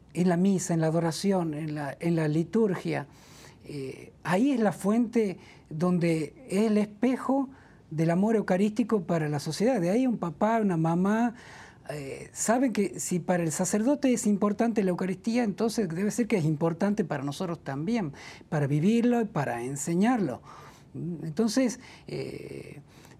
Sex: male